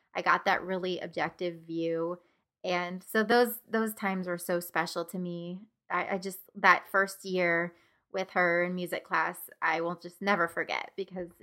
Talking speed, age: 175 wpm, 20-39